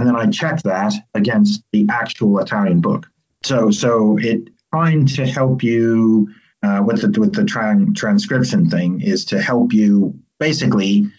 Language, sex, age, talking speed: English, male, 40-59, 150 wpm